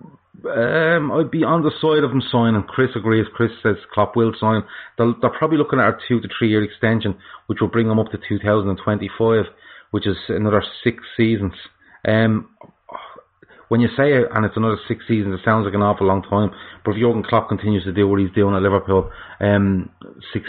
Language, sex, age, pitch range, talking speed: English, male, 30-49, 100-120 Hz, 215 wpm